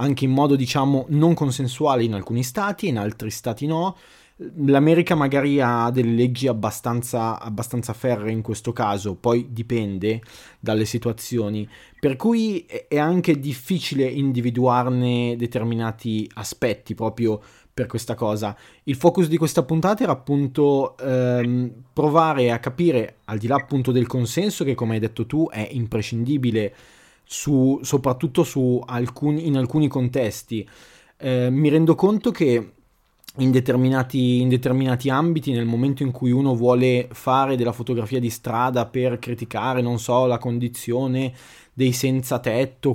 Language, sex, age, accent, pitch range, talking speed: Italian, male, 20-39, native, 120-140 Hz, 140 wpm